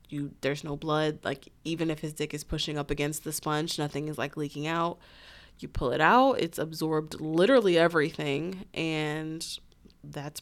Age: 20-39